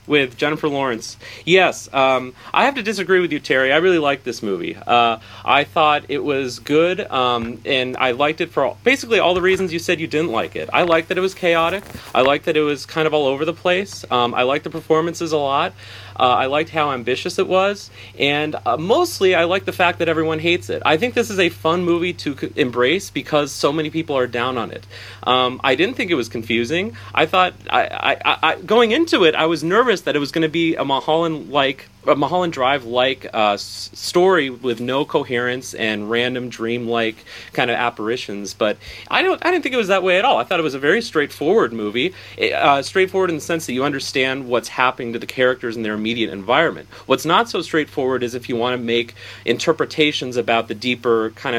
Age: 30-49